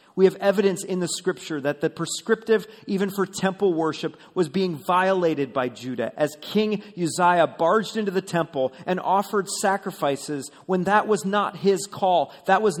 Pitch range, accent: 145-190 Hz, American